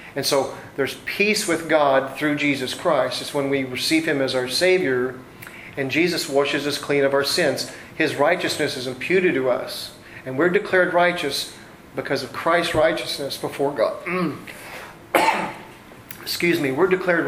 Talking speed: 155 wpm